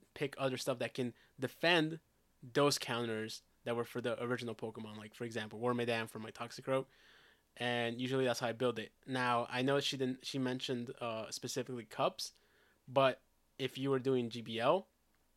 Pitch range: 115-130 Hz